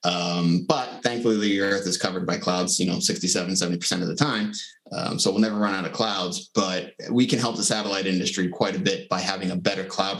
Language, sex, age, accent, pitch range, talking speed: English, male, 30-49, American, 95-105 Hz, 235 wpm